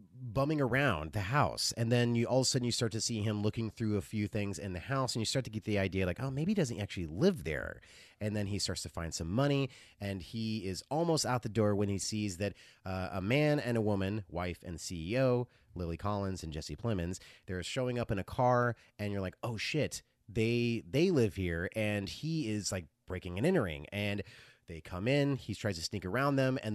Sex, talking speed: male, 240 wpm